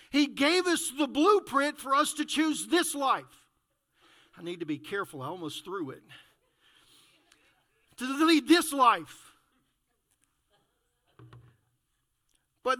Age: 50-69